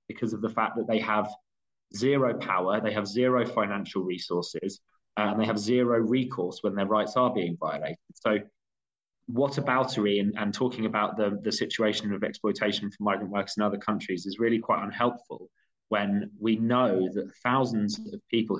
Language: English